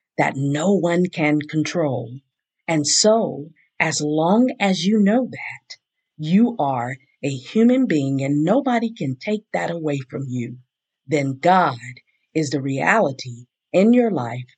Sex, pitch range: female, 140-210 Hz